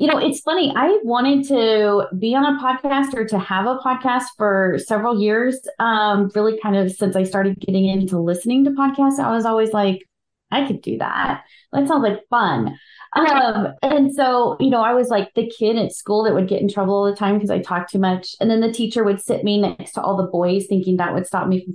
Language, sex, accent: English, female, American